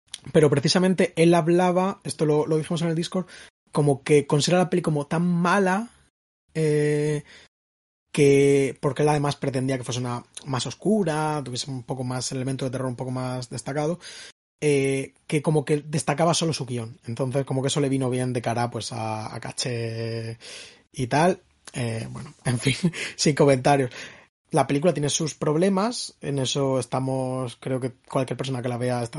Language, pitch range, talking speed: Spanish, 125-150 Hz, 180 wpm